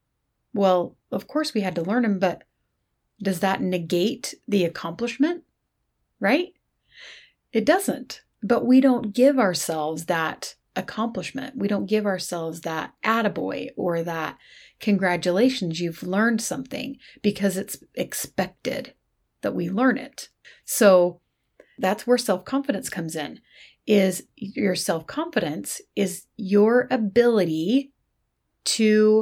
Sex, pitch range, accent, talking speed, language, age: female, 175-235 Hz, American, 115 wpm, English, 30-49